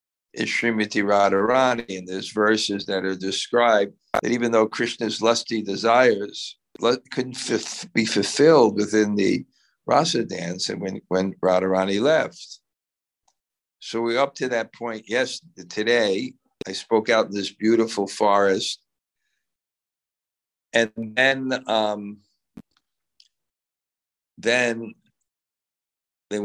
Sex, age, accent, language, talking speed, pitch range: male, 60-79, American, English, 110 wpm, 95-115 Hz